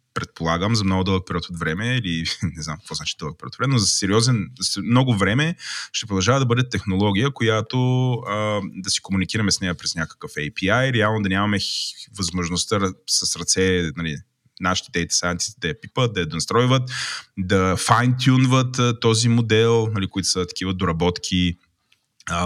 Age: 20-39